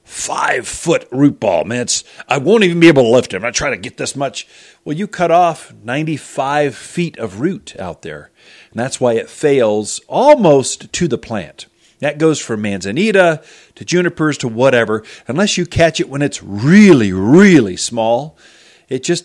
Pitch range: 120-170 Hz